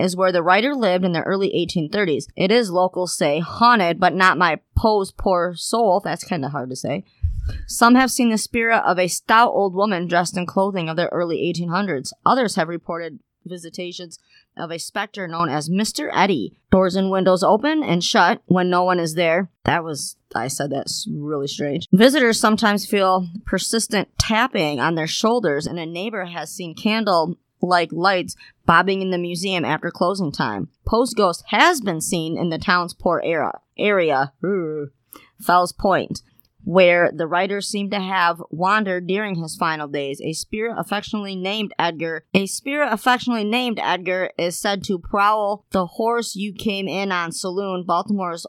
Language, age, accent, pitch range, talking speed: English, 30-49, American, 170-205 Hz, 175 wpm